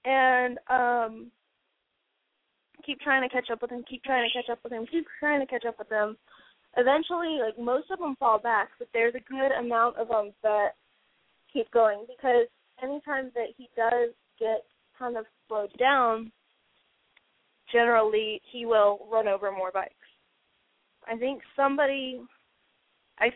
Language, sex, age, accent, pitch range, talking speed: English, female, 20-39, American, 215-265 Hz, 160 wpm